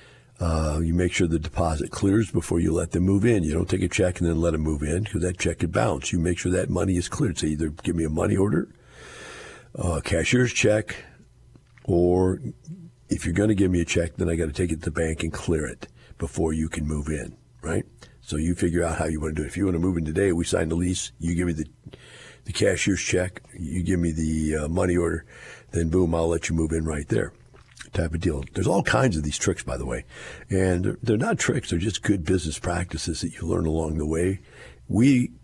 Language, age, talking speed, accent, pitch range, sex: English, 50-69, 245 wpm, American, 80-100 Hz, male